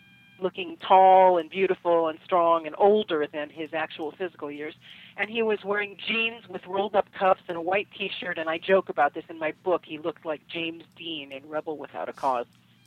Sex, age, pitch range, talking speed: female, 40-59, 160-195 Hz, 200 wpm